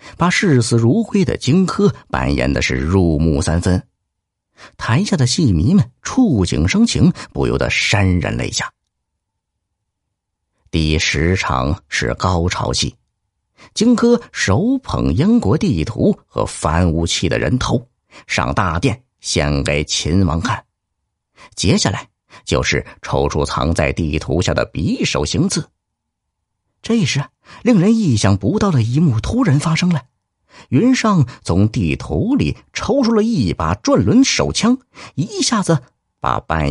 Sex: male